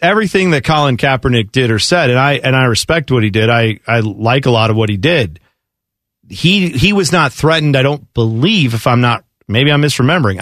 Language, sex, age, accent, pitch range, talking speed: English, male, 40-59, American, 125-175 Hz, 220 wpm